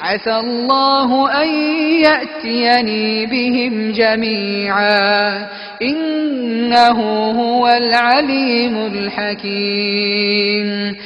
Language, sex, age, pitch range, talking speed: Arabic, female, 30-49, 215-270 Hz, 55 wpm